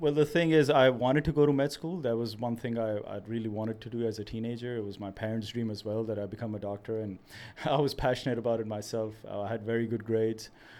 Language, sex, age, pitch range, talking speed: English, male, 30-49, 110-125 Hz, 270 wpm